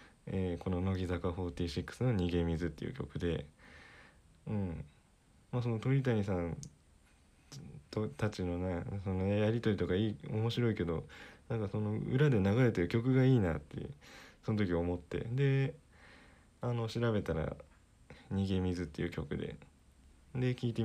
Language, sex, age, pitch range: Japanese, male, 20-39, 85-115 Hz